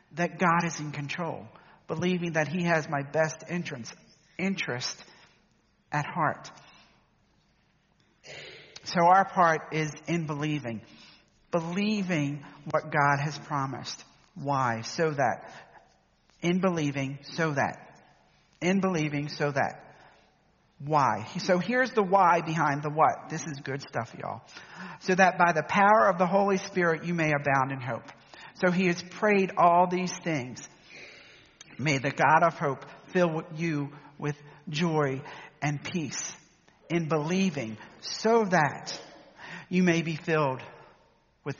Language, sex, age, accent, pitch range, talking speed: English, male, 50-69, American, 145-175 Hz, 130 wpm